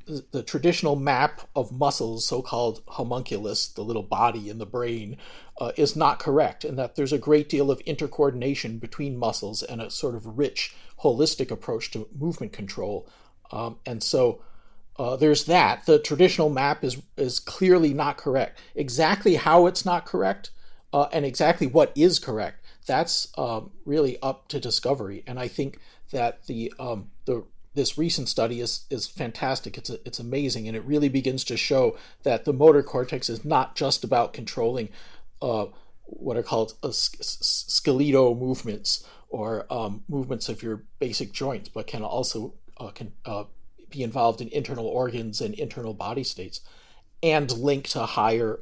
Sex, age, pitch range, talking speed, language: male, 40-59, 115-150 Hz, 165 wpm, English